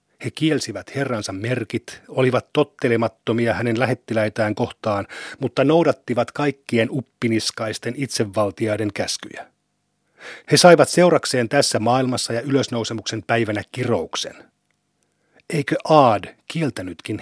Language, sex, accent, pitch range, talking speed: Finnish, male, native, 115-140 Hz, 95 wpm